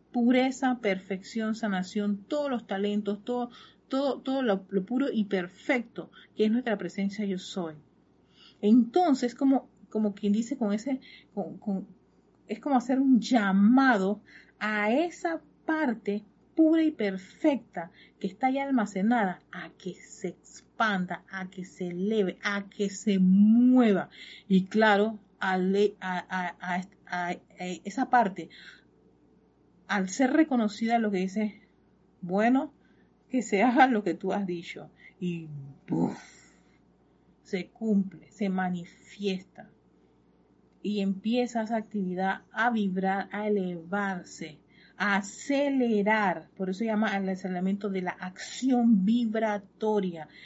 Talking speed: 115 wpm